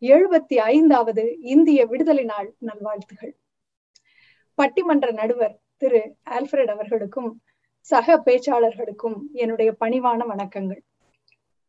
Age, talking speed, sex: 30-49, 80 wpm, female